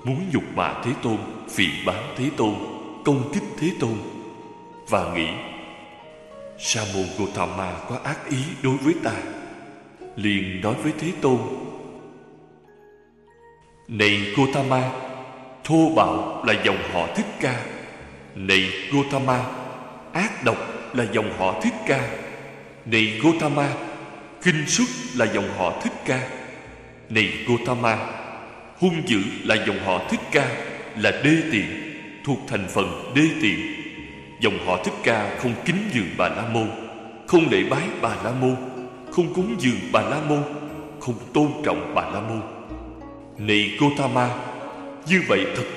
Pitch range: 110-150 Hz